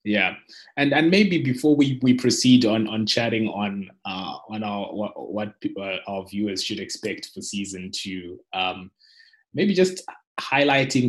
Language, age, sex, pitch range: English, 20-39, male, 95-125 Hz